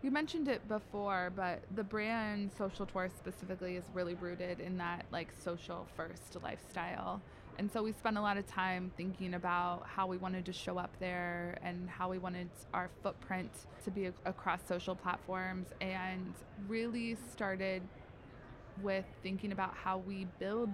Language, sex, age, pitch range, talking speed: English, female, 20-39, 180-200 Hz, 160 wpm